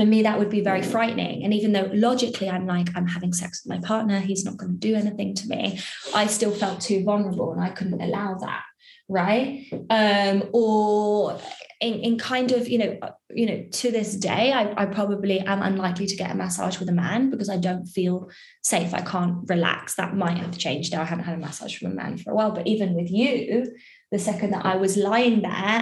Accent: British